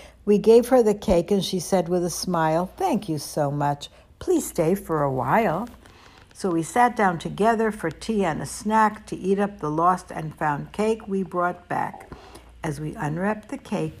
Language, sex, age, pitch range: English, female, 60-79, 155-220 Hz